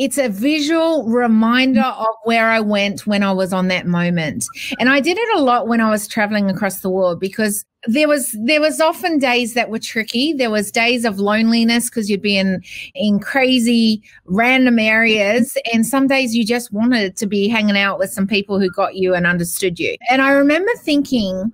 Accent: Australian